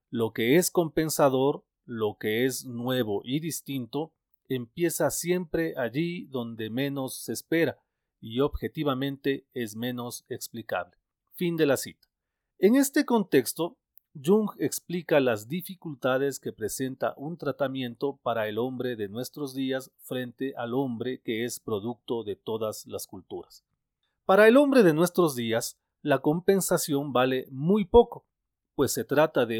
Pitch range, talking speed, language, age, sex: 120-160 Hz, 140 wpm, Spanish, 40-59, male